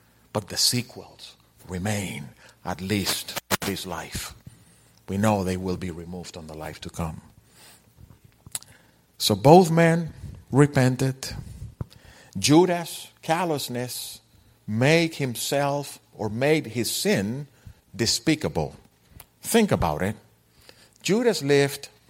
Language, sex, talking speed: English, male, 105 wpm